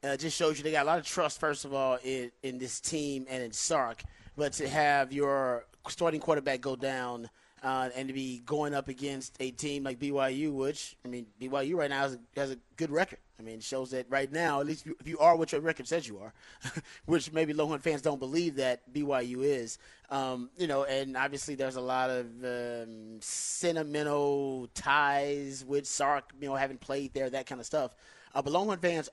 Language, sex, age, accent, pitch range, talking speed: English, male, 30-49, American, 125-150 Hz, 220 wpm